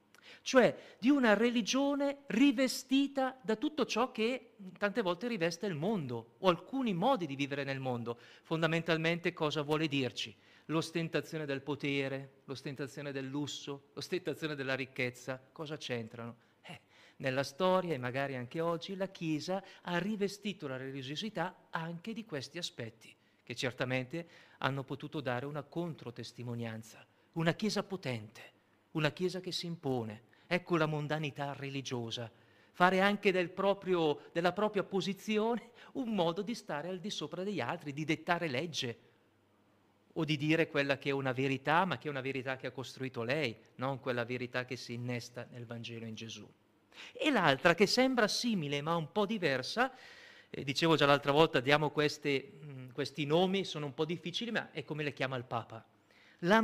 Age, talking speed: 40-59, 155 wpm